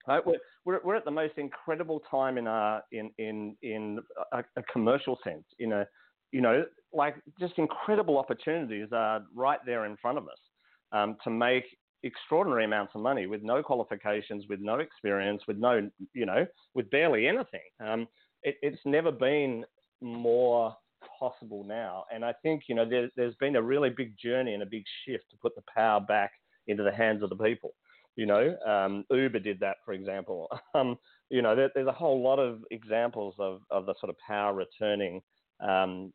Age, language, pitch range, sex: 40-59, English, 105-130 Hz, male